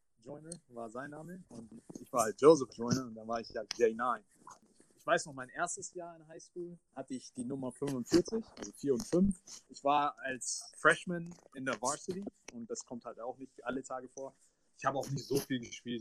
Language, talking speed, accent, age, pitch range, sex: German, 215 wpm, German, 30-49, 125-165 Hz, male